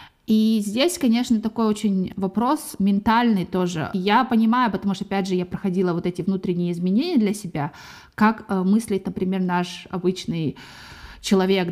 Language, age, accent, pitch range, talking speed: Russian, 20-39, native, 185-230 Hz, 145 wpm